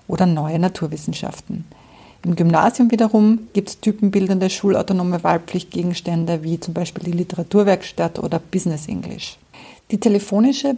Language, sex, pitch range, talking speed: German, female, 175-215 Hz, 115 wpm